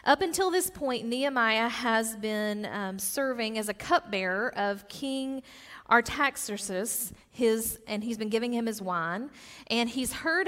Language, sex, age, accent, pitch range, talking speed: English, female, 40-59, American, 195-250 Hz, 145 wpm